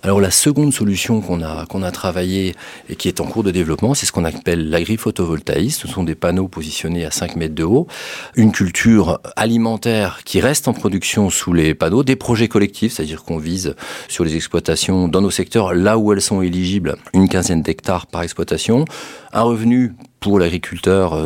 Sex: male